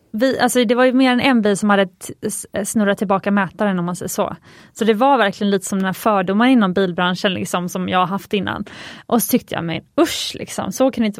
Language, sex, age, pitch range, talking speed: Swedish, female, 20-39, 195-245 Hz, 250 wpm